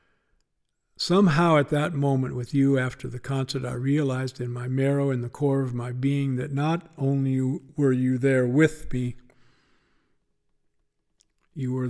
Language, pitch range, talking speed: English, 130-155 Hz, 150 wpm